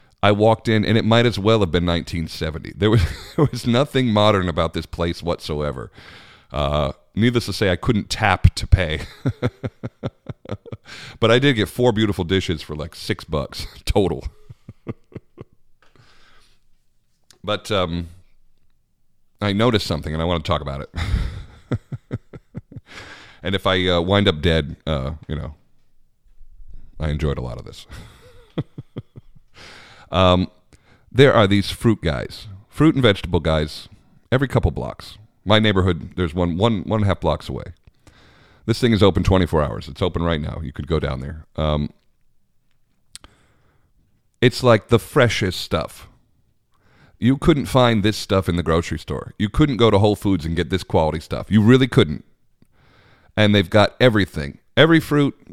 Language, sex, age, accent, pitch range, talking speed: English, male, 40-59, American, 85-115 Hz, 155 wpm